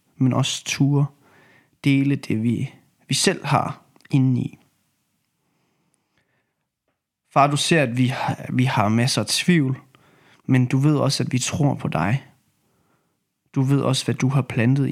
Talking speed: 150 wpm